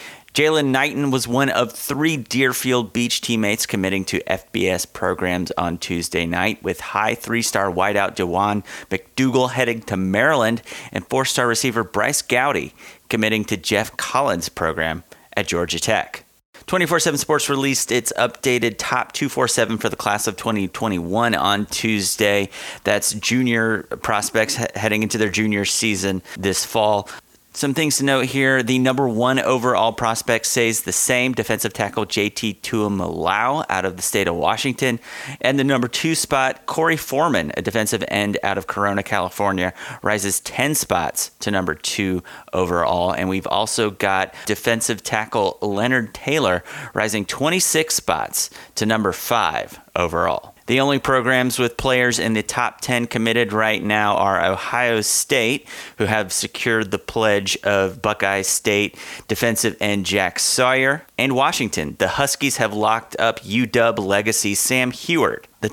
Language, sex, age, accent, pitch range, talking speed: English, male, 30-49, American, 100-125 Hz, 145 wpm